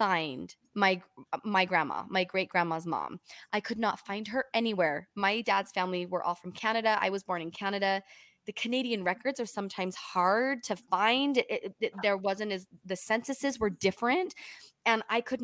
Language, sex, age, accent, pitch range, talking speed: English, female, 20-39, American, 185-240 Hz, 170 wpm